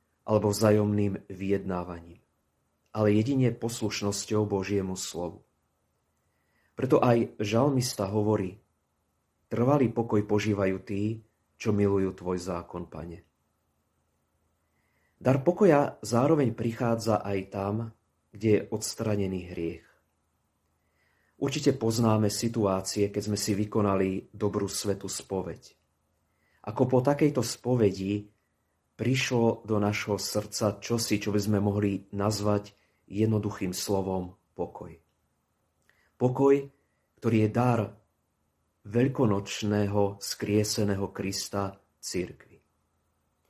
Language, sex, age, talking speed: Slovak, male, 30-49, 90 wpm